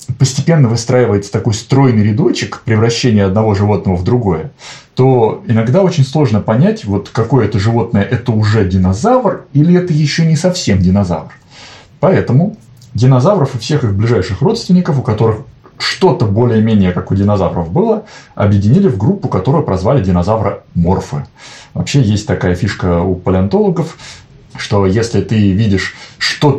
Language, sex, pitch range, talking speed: Russian, male, 105-140 Hz, 140 wpm